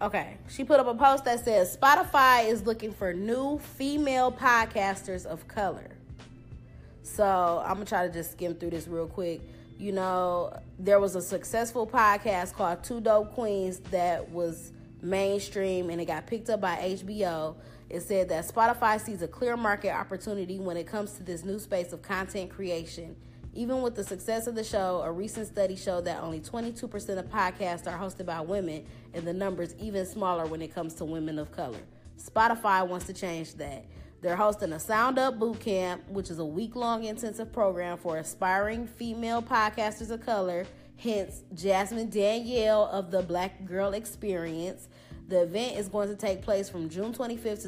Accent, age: American, 20-39